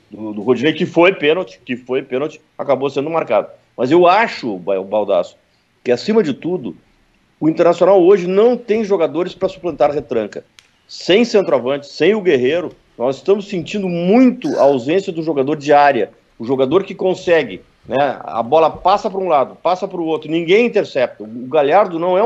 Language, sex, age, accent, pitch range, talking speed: Portuguese, male, 50-69, Brazilian, 150-205 Hz, 175 wpm